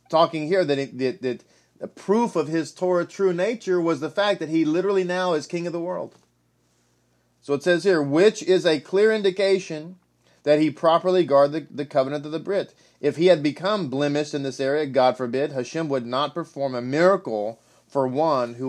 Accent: American